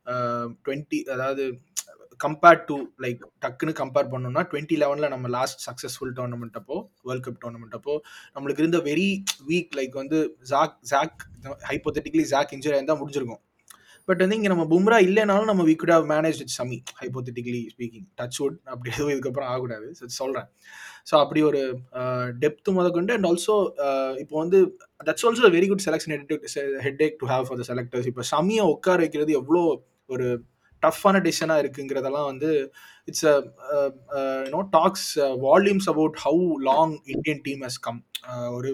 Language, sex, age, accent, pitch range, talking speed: Tamil, male, 20-39, native, 130-165 Hz, 145 wpm